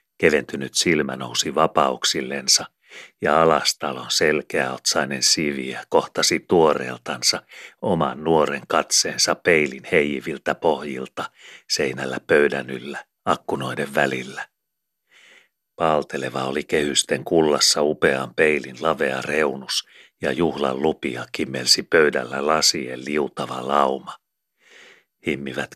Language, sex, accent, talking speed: Finnish, male, native, 90 wpm